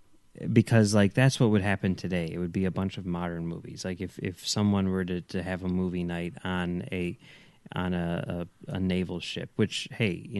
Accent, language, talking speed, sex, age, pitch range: American, English, 215 wpm, male, 30-49, 95-120 Hz